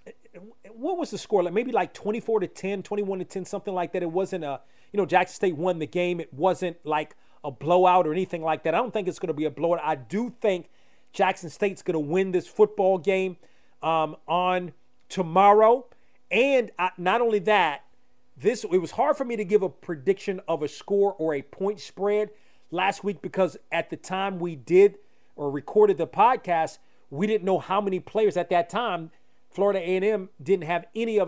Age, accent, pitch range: 40-59, American, 165-205 Hz